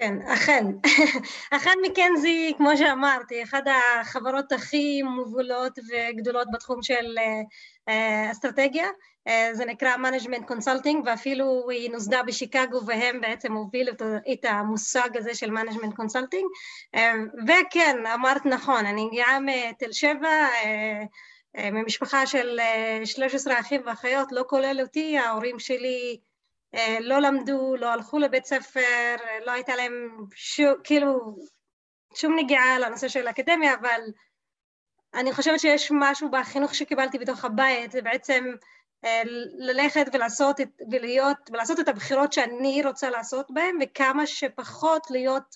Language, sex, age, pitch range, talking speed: Hebrew, female, 20-39, 235-280 Hz, 130 wpm